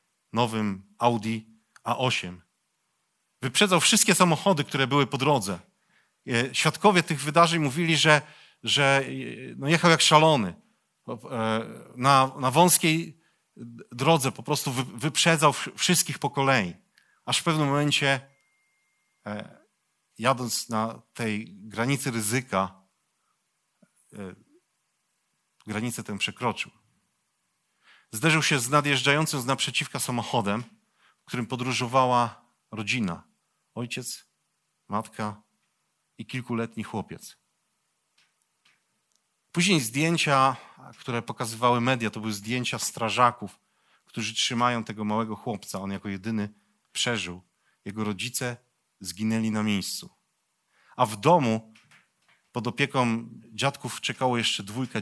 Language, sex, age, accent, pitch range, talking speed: Polish, male, 40-59, native, 110-145 Hz, 95 wpm